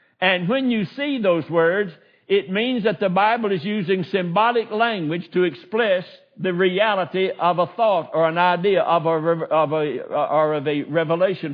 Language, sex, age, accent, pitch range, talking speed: English, male, 60-79, American, 170-220 Hz, 170 wpm